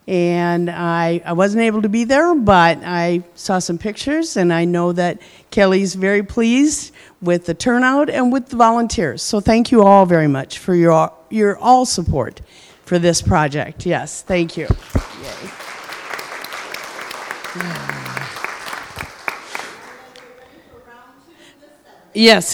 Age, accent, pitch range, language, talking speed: 50-69, American, 175-230 Hz, English, 120 wpm